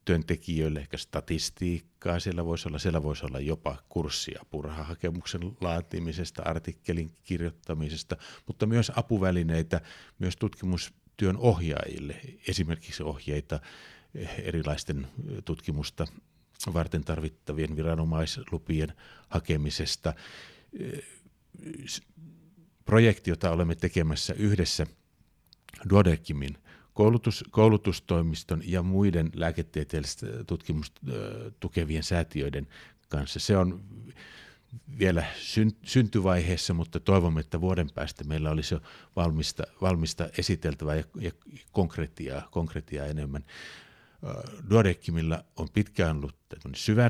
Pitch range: 80-95 Hz